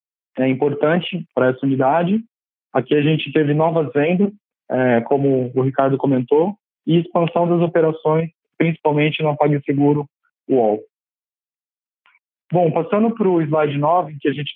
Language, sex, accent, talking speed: Portuguese, male, Brazilian, 140 wpm